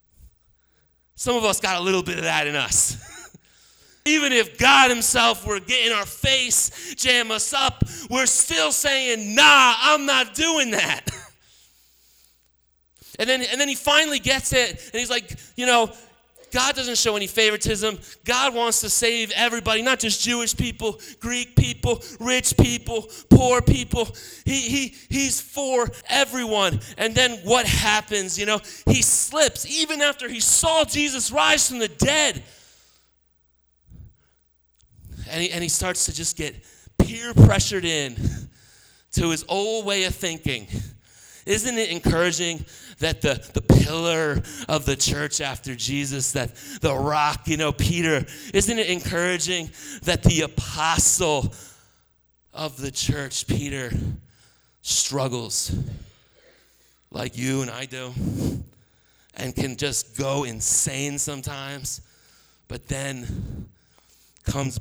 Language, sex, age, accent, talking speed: English, male, 30-49, American, 135 wpm